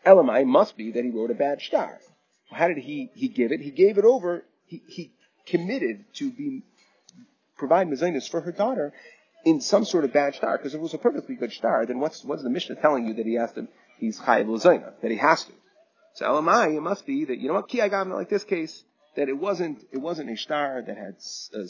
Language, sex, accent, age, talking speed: English, male, American, 30-49, 235 wpm